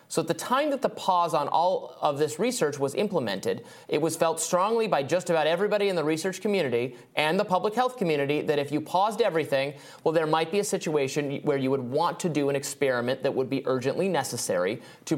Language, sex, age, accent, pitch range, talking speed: English, male, 30-49, American, 135-180 Hz, 220 wpm